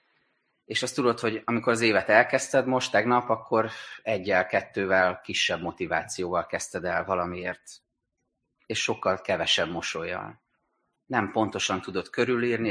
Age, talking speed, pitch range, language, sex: 30-49, 125 wpm, 100-125 Hz, Hungarian, male